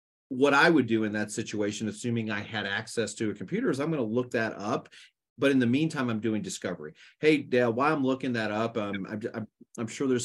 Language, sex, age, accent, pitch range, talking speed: English, male, 30-49, American, 110-145 Hz, 235 wpm